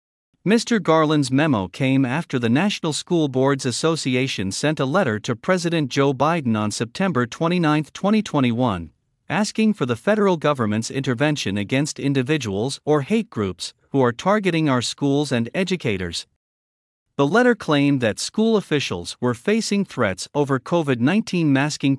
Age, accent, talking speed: 50-69, American, 140 wpm